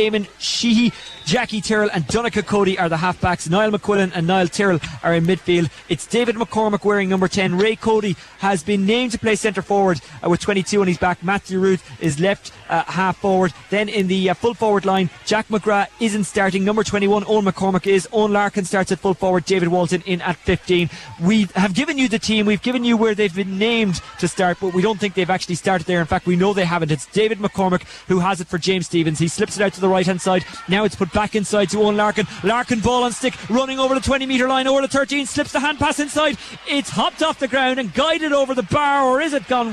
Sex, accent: male, Irish